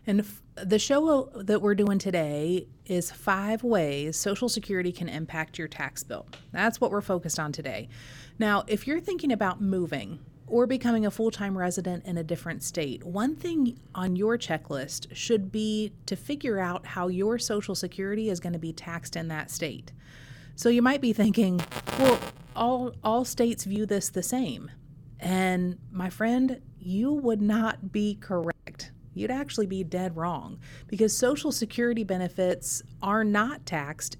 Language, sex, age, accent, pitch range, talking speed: English, female, 30-49, American, 155-220 Hz, 165 wpm